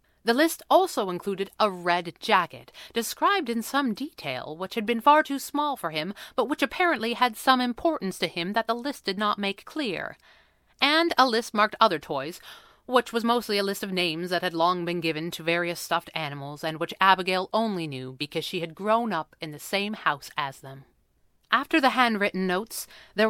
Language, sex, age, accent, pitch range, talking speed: English, female, 30-49, American, 175-255 Hz, 200 wpm